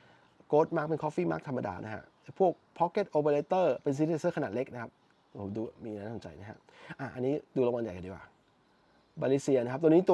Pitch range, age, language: 120-155 Hz, 20-39, Thai